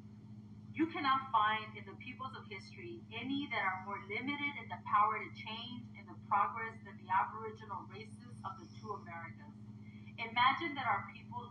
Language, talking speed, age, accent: English, 170 wpm, 30-49, American